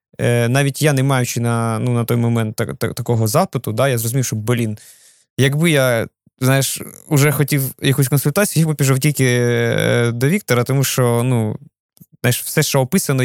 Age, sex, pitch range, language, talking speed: 20-39, male, 115-140 Hz, Ukrainian, 170 wpm